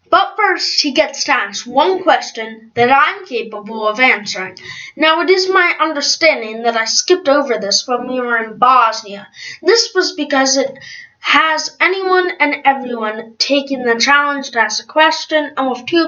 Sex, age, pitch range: female, 20-39, 225-315 Hz